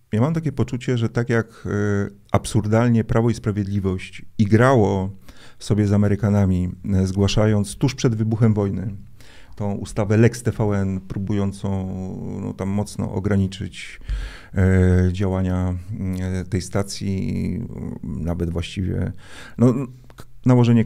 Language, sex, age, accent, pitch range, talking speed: Polish, male, 40-59, native, 95-110 Hz, 110 wpm